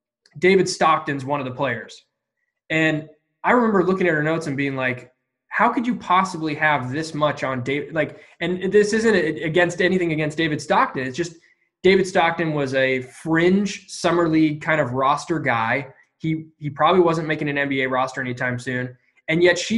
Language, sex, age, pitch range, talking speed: English, male, 20-39, 145-185 Hz, 180 wpm